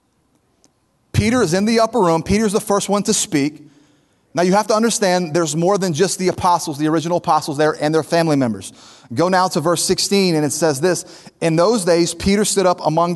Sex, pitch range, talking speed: male, 150-185 Hz, 215 wpm